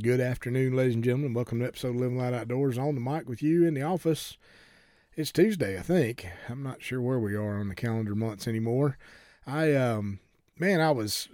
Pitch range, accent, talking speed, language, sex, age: 115-155 Hz, American, 215 wpm, English, male, 40-59